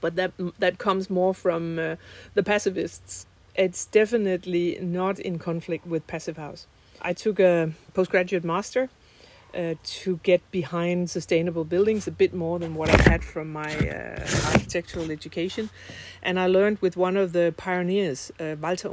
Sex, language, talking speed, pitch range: female, English, 160 wpm, 165-195 Hz